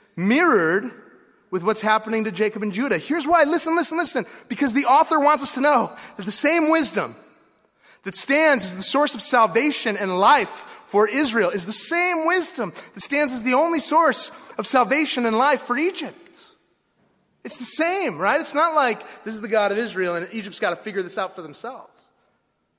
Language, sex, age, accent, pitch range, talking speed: English, male, 30-49, American, 155-260 Hz, 190 wpm